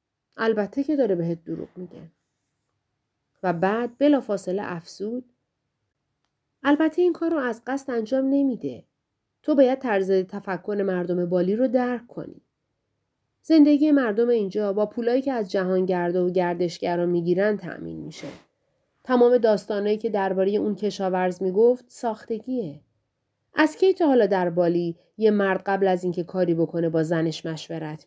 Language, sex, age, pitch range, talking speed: Persian, female, 30-49, 165-245 Hz, 135 wpm